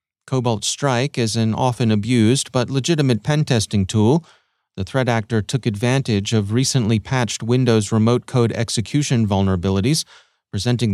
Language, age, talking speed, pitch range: English, 40-59, 130 wpm, 110-135 Hz